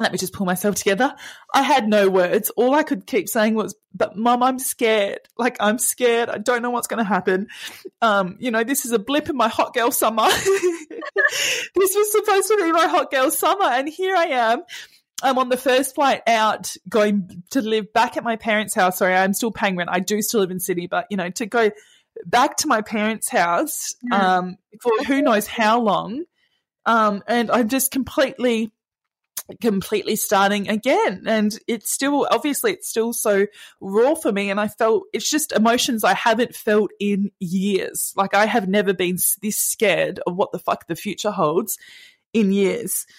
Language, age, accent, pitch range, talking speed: English, 20-39, Australian, 200-255 Hz, 195 wpm